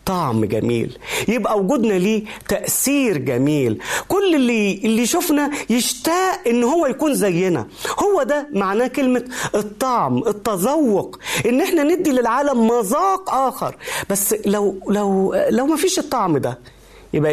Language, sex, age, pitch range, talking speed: Arabic, male, 40-59, 190-280 Hz, 130 wpm